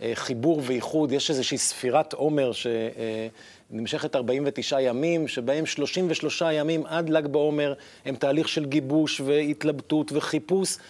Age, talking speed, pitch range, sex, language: 50-69, 115 wpm, 130-155 Hz, male, Hebrew